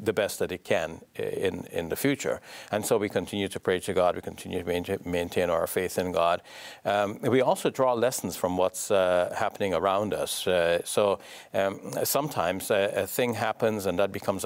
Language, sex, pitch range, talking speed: English, male, 90-105 Hz, 195 wpm